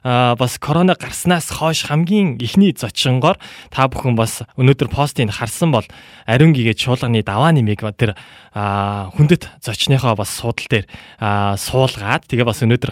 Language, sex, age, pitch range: Korean, male, 20-39, 110-145 Hz